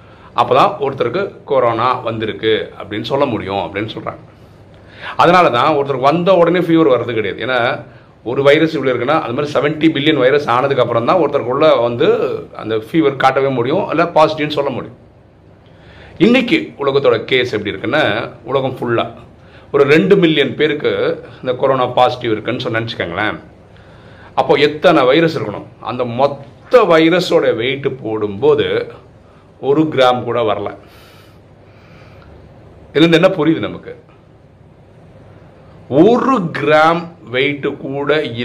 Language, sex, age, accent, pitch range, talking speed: Tamil, male, 40-59, native, 125-165 Hz, 115 wpm